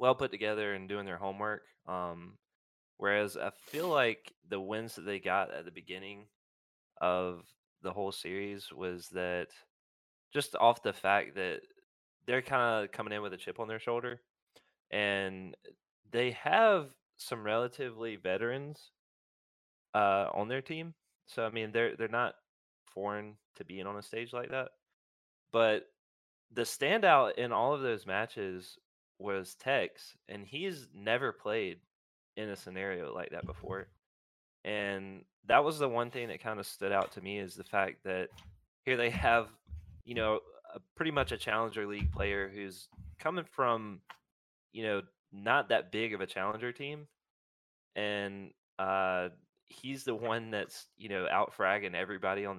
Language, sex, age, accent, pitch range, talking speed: English, male, 20-39, American, 95-115 Hz, 155 wpm